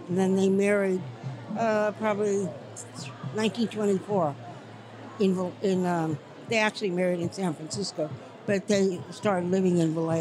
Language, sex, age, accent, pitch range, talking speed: English, female, 60-79, American, 175-220 Hz, 120 wpm